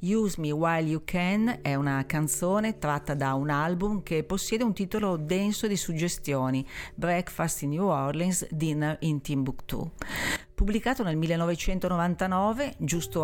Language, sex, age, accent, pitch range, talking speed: Italian, female, 50-69, native, 145-185 Hz, 135 wpm